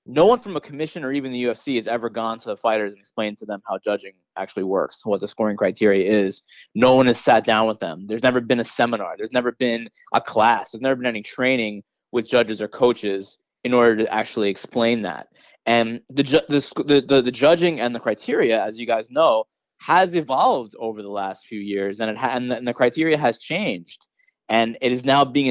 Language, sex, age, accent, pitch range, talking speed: English, male, 20-39, American, 110-130 Hz, 235 wpm